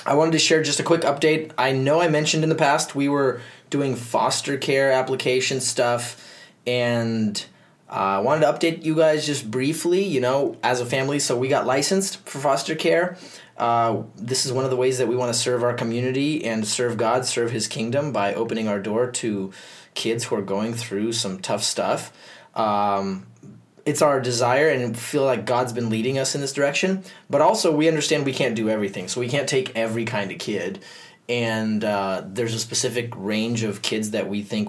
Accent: American